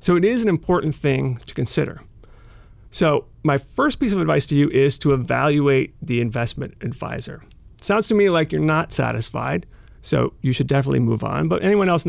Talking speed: 195 wpm